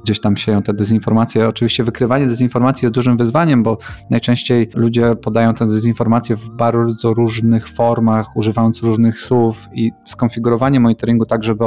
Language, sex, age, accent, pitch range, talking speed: Polish, male, 20-39, native, 105-120 Hz, 150 wpm